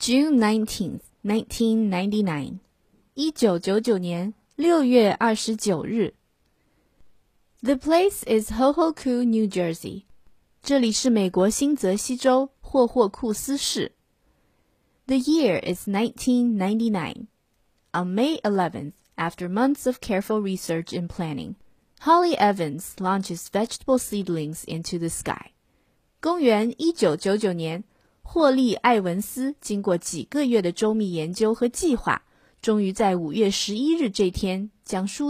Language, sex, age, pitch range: Chinese, female, 20-39, 185-250 Hz